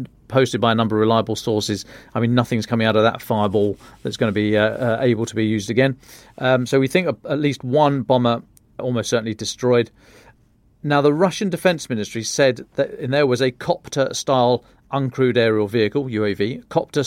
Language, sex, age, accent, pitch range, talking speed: English, male, 40-59, British, 115-140 Hz, 195 wpm